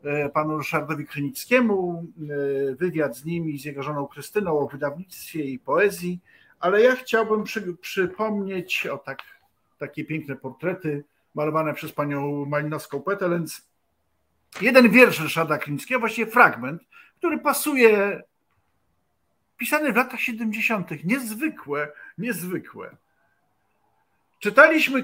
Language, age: Polish, 50-69